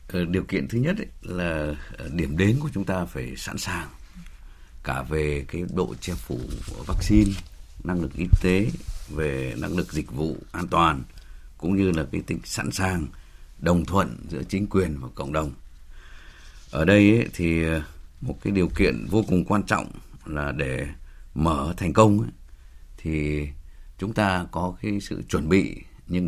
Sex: male